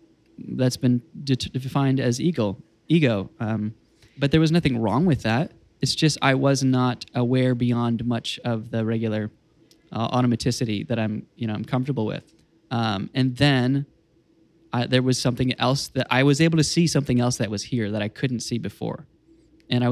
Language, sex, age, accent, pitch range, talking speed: English, male, 20-39, American, 120-150 Hz, 185 wpm